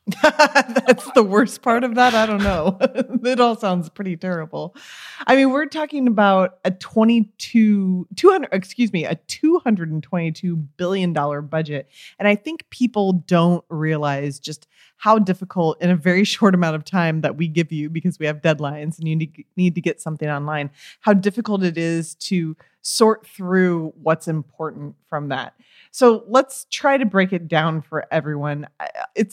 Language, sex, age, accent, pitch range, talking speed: English, female, 20-39, American, 155-205 Hz, 165 wpm